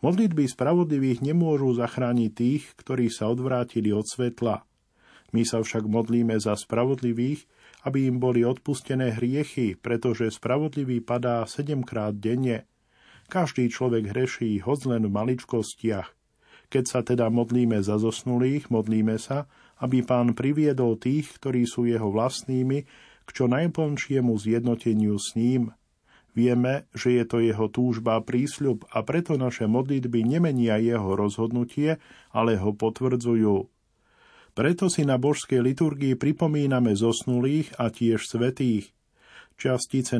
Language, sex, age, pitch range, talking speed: Slovak, male, 50-69, 115-130 Hz, 125 wpm